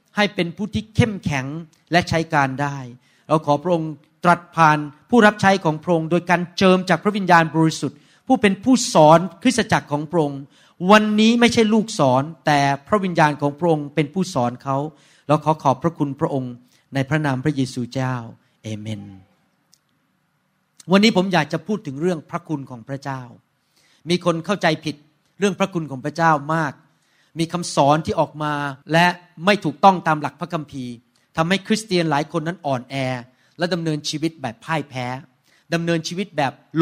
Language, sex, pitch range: Thai, male, 145-185 Hz